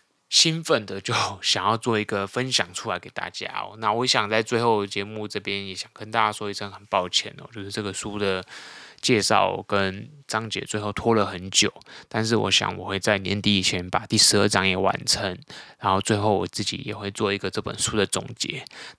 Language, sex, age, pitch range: Chinese, male, 20-39, 100-115 Hz